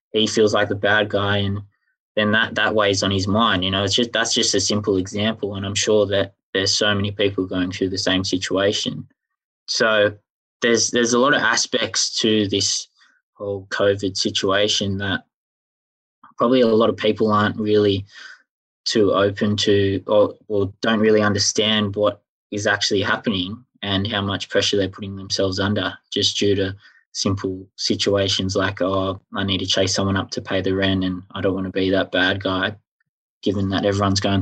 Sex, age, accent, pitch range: male, 20-39, Australian, 95-105 Hz